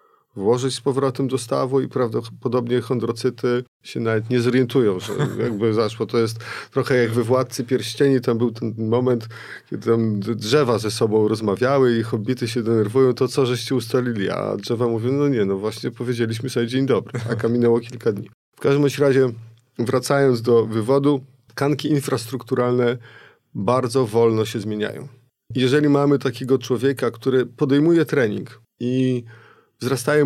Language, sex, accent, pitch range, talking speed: Polish, male, native, 115-135 Hz, 150 wpm